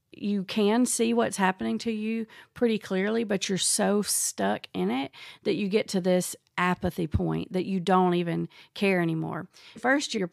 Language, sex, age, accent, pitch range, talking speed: English, female, 40-59, American, 180-215 Hz, 175 wpm